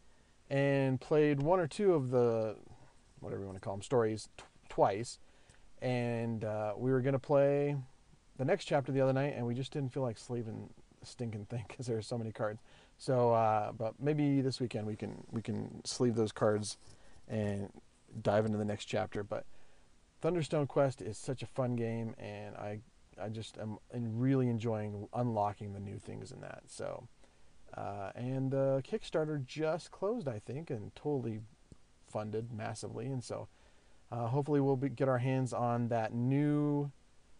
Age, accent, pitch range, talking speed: 40-59, American, 110-145 Hz, 180 wpm